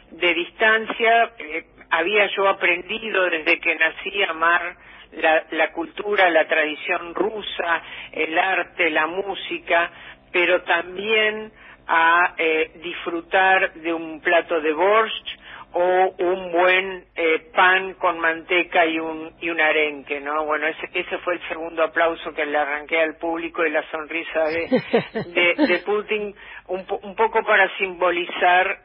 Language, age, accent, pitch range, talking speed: Spanish, 50-69, Argentinian, 165-195 Hz, 145 wpm